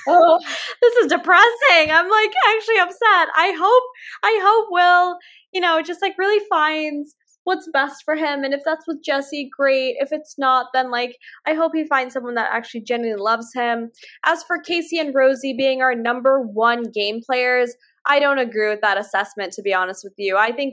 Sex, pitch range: female, 195-290 Hz